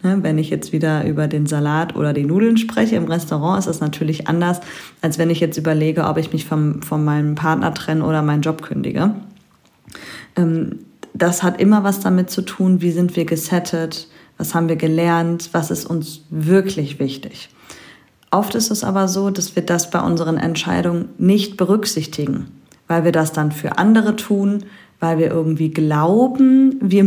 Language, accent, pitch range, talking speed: German, German, 155-205 Hz, 175 wpm